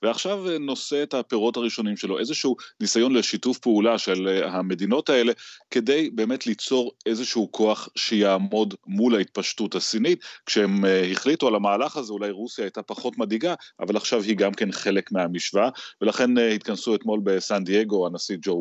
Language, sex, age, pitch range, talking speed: Hebrew, male, 30-49, 95-120 Hz, 150 wpm